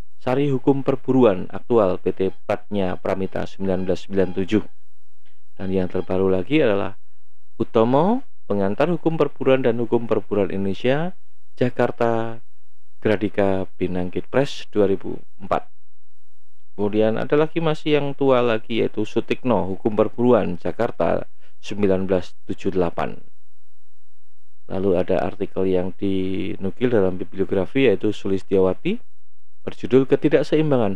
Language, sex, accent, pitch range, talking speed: Indonesian, male, native, 95-125 Hz, 95 wpm